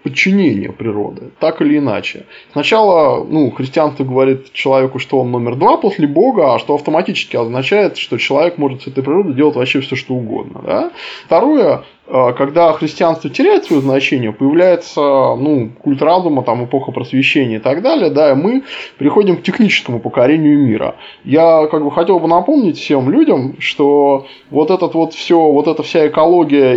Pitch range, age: 135-180 Hz, 20-39